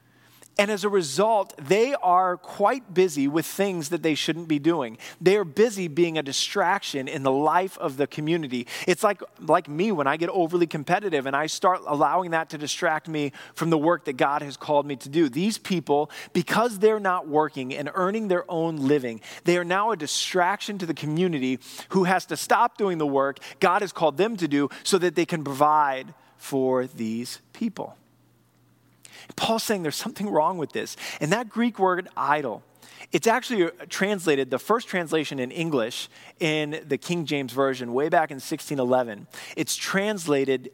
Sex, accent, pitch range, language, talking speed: male, American, 140-185 Hz, English, 185 wpm